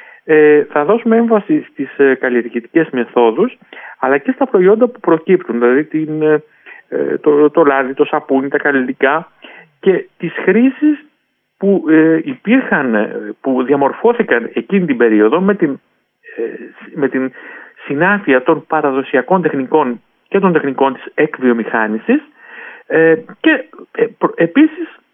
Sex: male